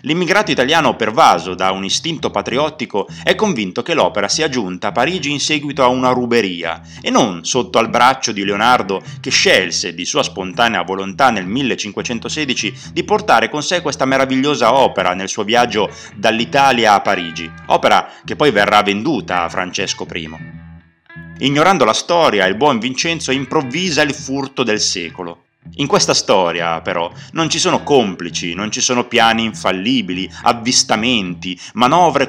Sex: male